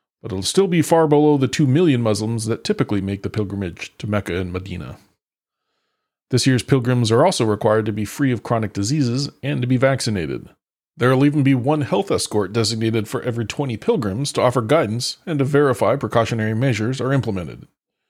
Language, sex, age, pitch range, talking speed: English, male, 40-59, 105-140 Hz, 190 wpm